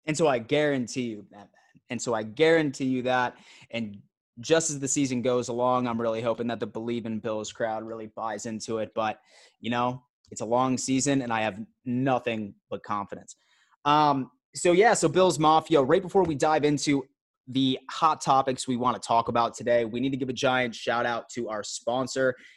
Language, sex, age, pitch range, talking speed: English, male, 20-39, 120-150 Hz, 200 wpm